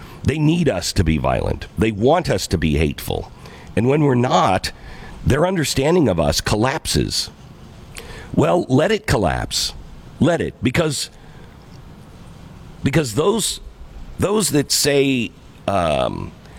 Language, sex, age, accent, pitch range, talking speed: English, male, 50-69, American, 95-140 Hz, 125 wpm